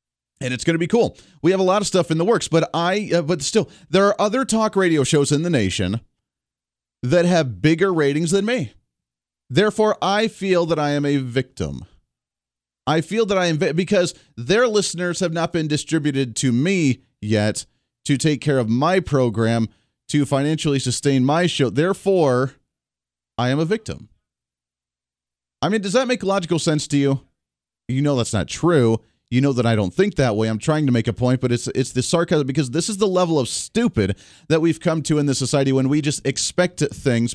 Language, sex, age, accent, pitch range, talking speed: English, male, 30-49, American, 115-160 Hz, 200 wpm